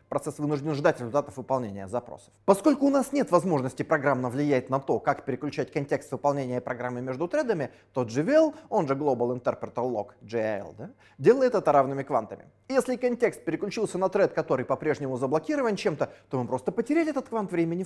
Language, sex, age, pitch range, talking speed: English, male, 20-39, 130-190 Hz, 170 wpm